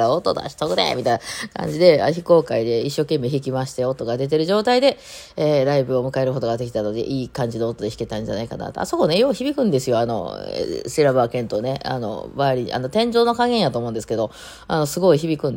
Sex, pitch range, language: female, 130-200 Hz, Japanese